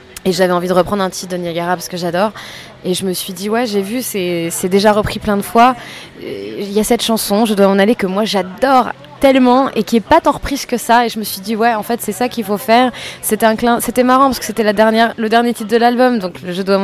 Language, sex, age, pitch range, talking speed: French, female, 20-39, 185-220 Hz, 280 wpm